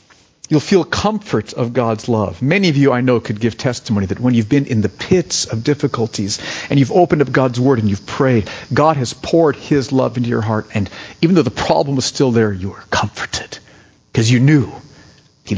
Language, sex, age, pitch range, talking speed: English, male, 50-69, 105-145 Hz, 210 wpm